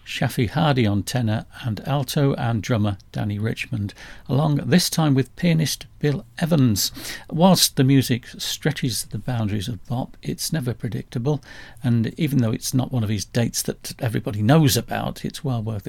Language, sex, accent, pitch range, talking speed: English, male, British, 110-155 Hz, 165 wpm